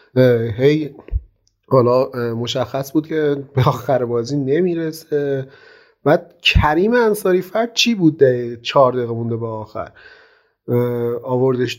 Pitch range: 120-155 Hz